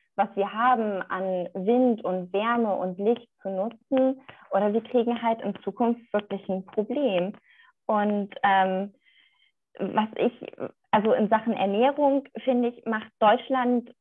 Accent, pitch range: German, 200-245 Hz